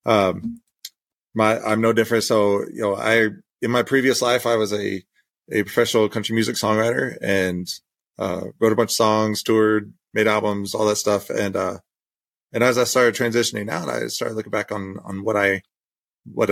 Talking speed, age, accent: 185 wpm, 30-49, American